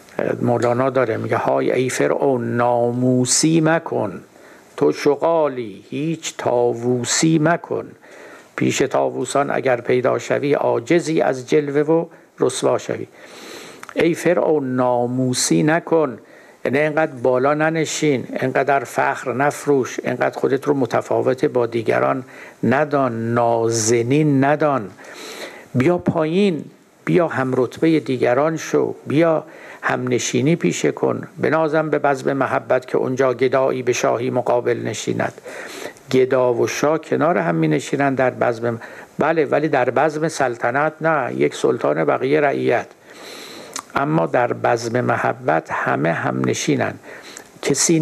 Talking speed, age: 115 wpm, 60-79